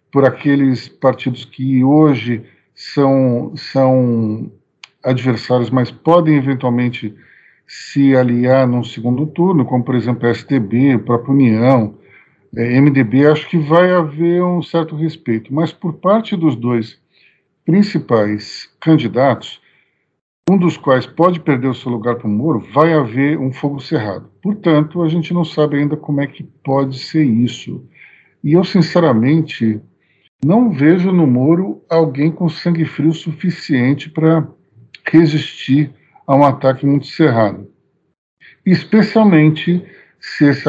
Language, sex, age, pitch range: Portuguese, male, 50-69, 125-165 Hz